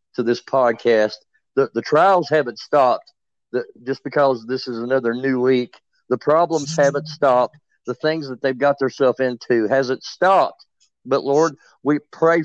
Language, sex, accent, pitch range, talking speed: English, male, American, 130-170 Hz, 160 wpm